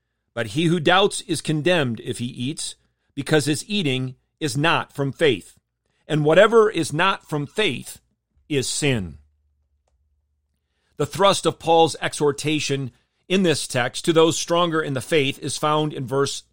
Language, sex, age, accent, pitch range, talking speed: English, male, 40-59, American, 130-170 Hz, 155 wpm